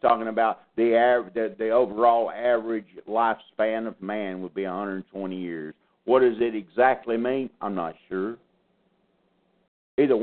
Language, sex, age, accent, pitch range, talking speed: English, male, 60-79, American, 95-150 Hz, 140 wpm